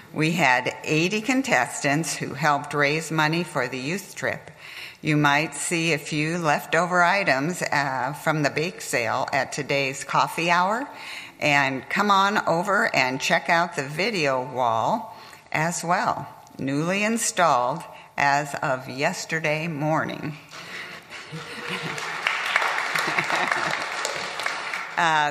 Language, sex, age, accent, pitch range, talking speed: English, female, 60-79, American, 140-175 Hz, 110 wpm